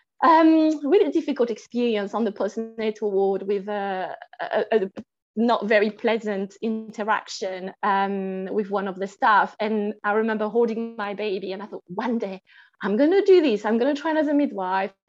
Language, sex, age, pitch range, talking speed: English, female, 20-39, 215-280 Hz, 170 wpm